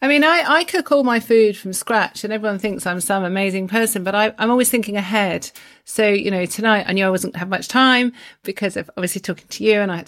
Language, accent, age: English, British, 40-59